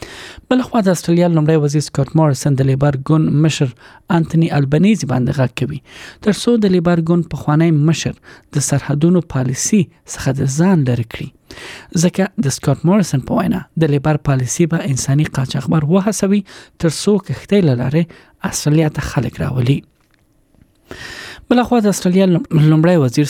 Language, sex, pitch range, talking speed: English, male, 135-170 Hz, 140 wpm